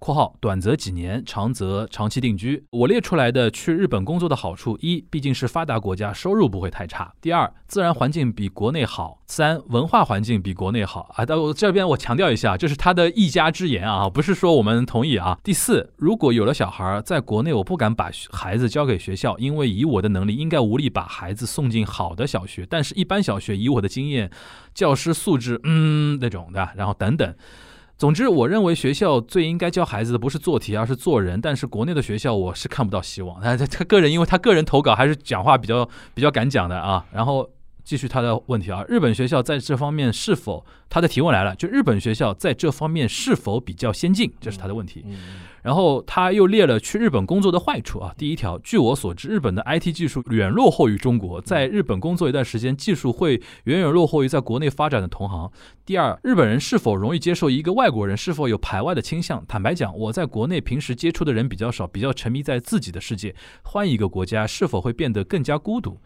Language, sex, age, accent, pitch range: Chinese, male, 20-39, native, 105-155 Hz